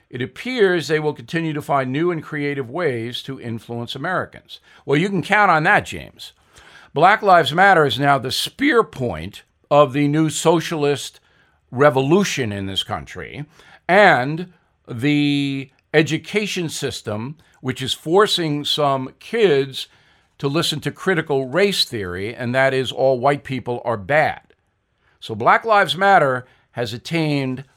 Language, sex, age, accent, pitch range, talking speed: English, male, 50-69, American, 130-185 Hz, 145 wpm